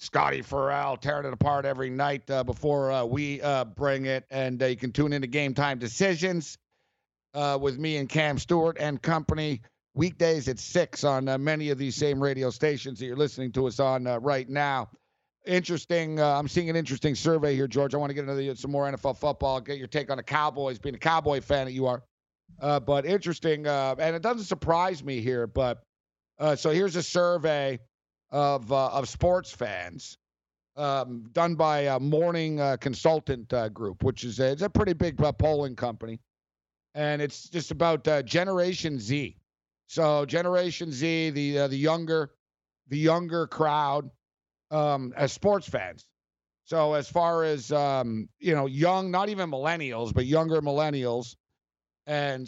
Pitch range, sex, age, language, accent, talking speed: 130-155 Hz, male, 50-69, English, American, 180 wpm